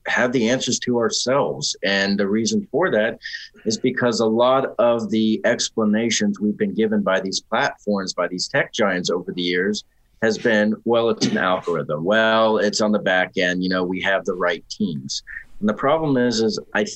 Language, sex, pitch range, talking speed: English, male, 100-125 Hz, 195 wpm